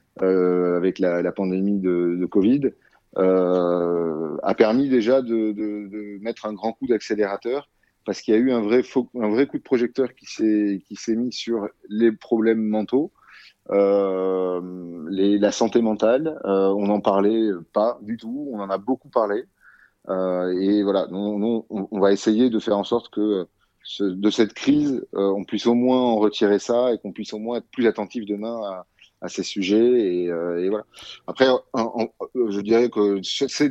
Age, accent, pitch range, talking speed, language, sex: 30-49, French, 100-120 Hz, 190 wpm, French, male